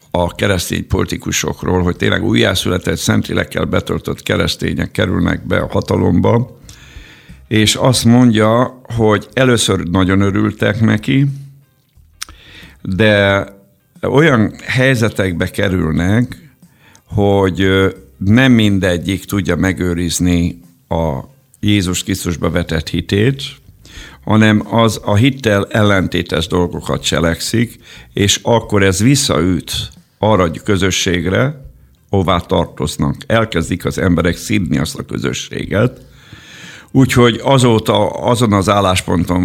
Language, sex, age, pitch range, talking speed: Hungarian, male, 50-69, 90-115 Hz, 95 wpm